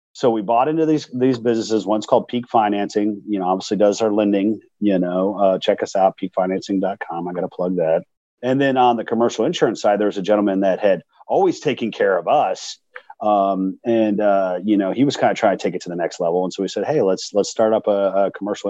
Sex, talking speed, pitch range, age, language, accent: male, 240 wpm, 100-120 Hz, 40-59, English, American